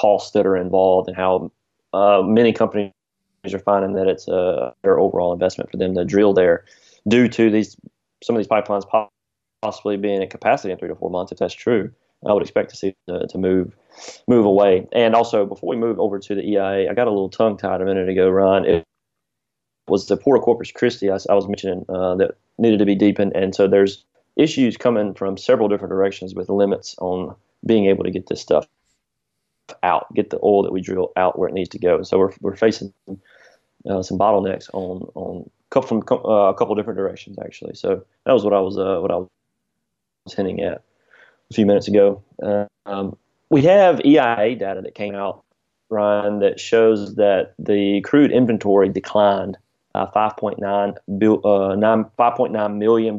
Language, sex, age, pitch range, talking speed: English, male, 30-49, 95-110 Hz, 195 wpm